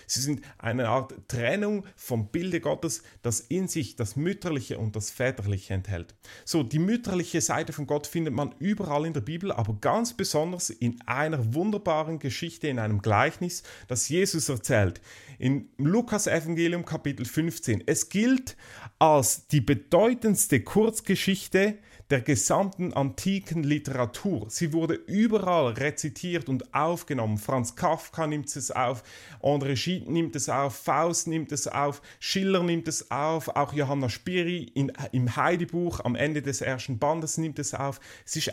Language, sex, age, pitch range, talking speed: English, male, 30-49, 125-170 Hz, 150 wpm